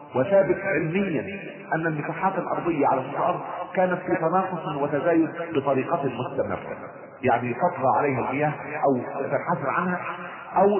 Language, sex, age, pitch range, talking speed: Arabic, male, 40-59, 140-185 Hz, 115 wpm